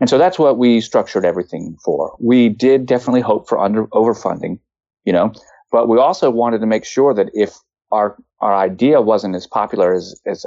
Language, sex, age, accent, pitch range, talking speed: English, male, 30-49, American, 100-135 Hz, 195 wpm